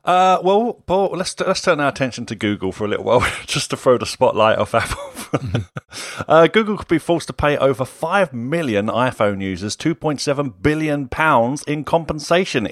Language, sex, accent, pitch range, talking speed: English, male, British, 105-155 Hz, 175 wpm